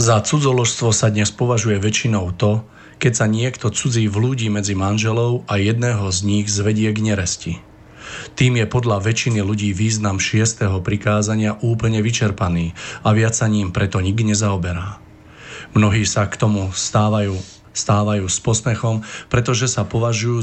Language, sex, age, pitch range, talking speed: Slovak, male, 40-59, 100-115 Hz, 145 wpm